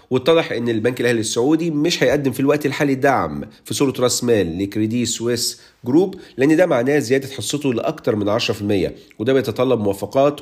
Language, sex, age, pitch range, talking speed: Arabic, male, 50-69, 105-140 Hz, 165 wpm